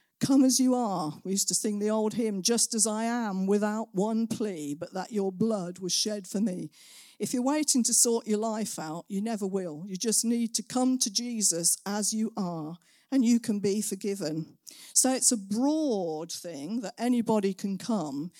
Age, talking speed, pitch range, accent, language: 50-69, 200 wpm, 185-235 Hz, British, English